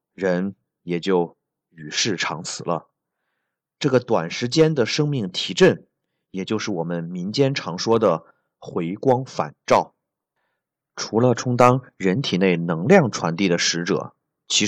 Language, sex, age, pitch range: Chinese, male, 30-49, 90-140 Hz